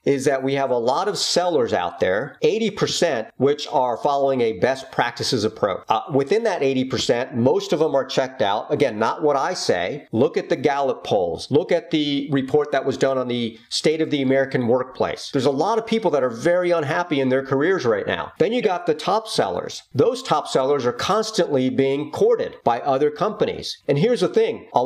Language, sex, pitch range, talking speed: English, male, 135-185 Hz, 210 wpm